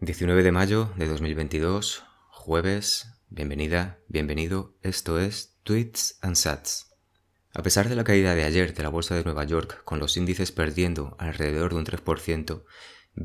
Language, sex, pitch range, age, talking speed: Spanish, male, 80-95 Hz, 30-49, 155 wpm